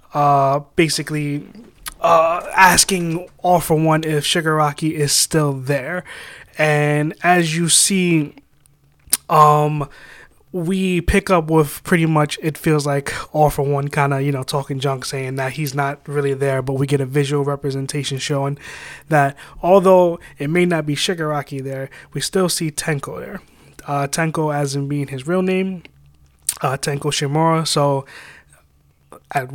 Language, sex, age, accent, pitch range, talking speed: English, male, 20-39, American, 140-160 Hz, 150 wpm